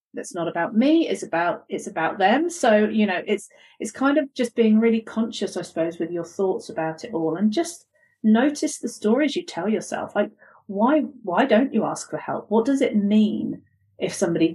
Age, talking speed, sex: 40-59, 205 wpm, female